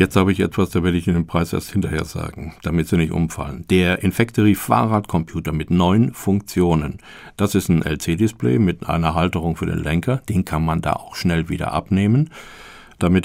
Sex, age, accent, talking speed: male, 50-69, German, 185 wpm